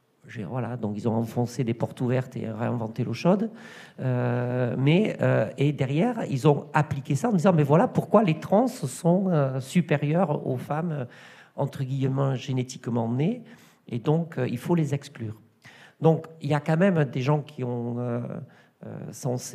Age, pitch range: 50-69, 125-155 Hz